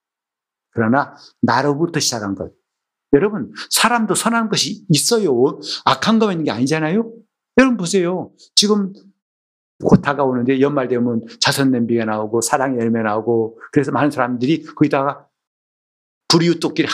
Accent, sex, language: native, male, Korean